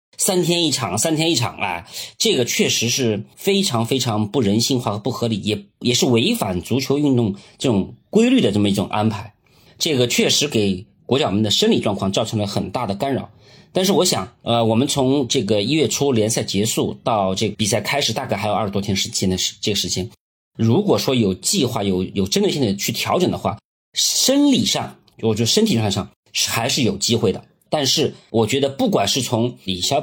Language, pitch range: Chinese, 100-135 Hz